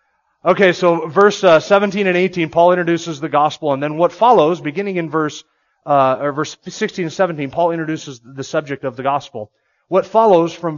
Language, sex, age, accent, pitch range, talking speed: English, male, 30-49, American, 145-180 Hz, 195 wpm